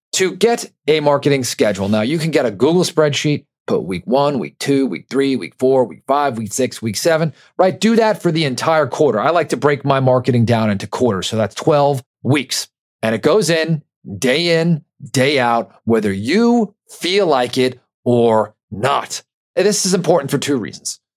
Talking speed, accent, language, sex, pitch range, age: 195 wpm, American, English, male, 115-150 Hz, 40-59